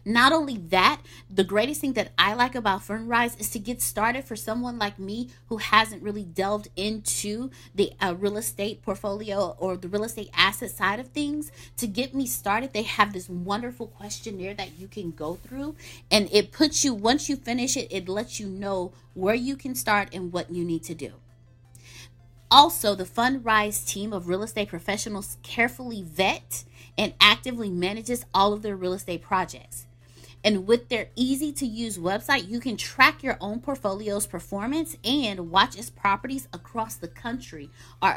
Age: 30-49